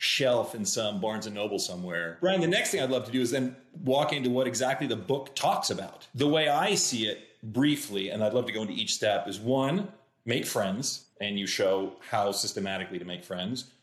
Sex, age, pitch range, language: male, 40-59, 115-150 Hz, English